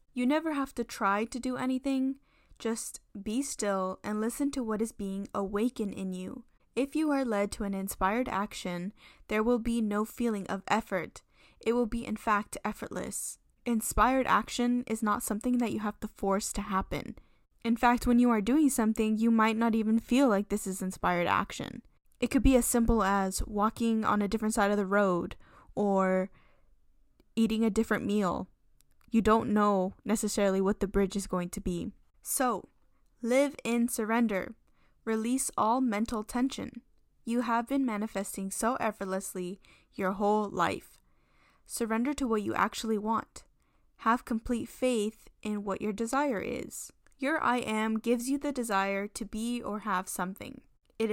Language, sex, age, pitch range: English, female, 10-29, 200-240 Hz